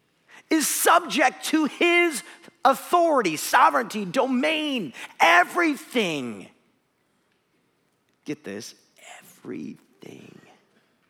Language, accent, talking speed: English, American, 60 wpm